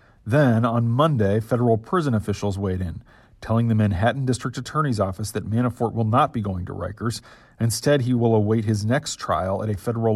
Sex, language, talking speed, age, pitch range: male, English, 190 wpm, 40-59, 100-120 Hz